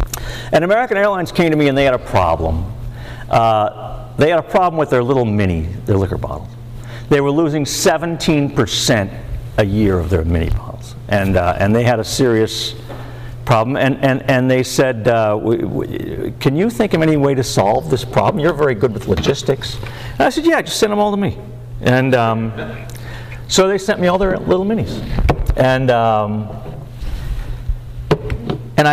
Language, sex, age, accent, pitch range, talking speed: English, male, 50-69, American, 115-150 Hz, 180 wpm